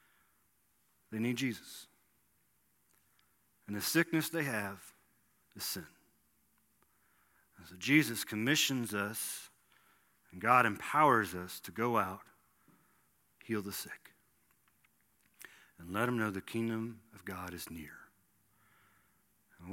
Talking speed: 110 wpm